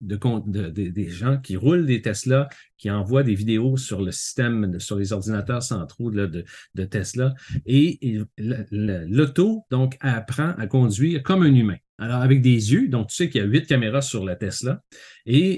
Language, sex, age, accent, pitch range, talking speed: French, male, 40-59, Canadian, 105-135 Hz, 195 wpm